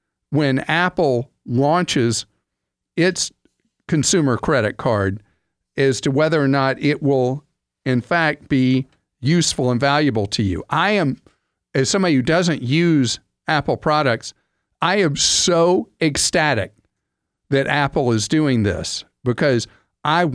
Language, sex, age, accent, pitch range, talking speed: English, male, 50-69, American, 125-160 Hz, 125 wpm